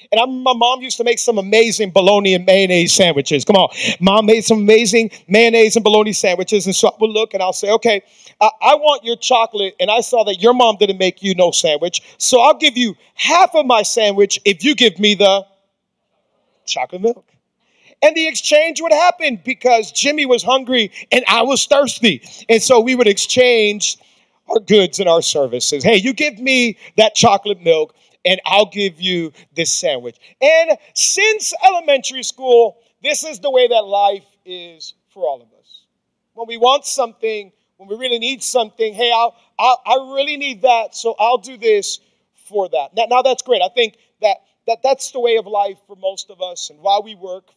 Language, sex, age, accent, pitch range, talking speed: English, male, 40-59, American, 195-255 Hz, 195 wpm